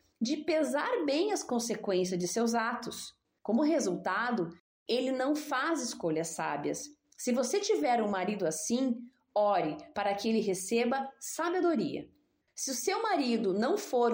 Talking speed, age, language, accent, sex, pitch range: 140 wpm, 30-49, Portuguese, Brazilian, female, 215-305 Hz